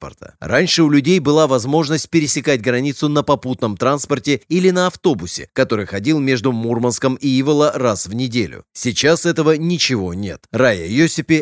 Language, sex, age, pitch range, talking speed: Russian, male, 30-49, 115-155 Hz, 150 wpm